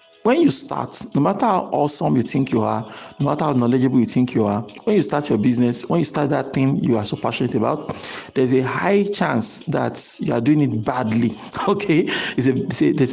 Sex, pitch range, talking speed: male, 120-150 Hz, 210 wpm